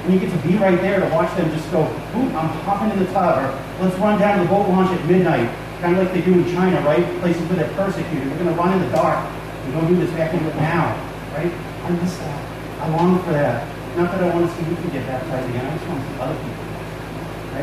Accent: American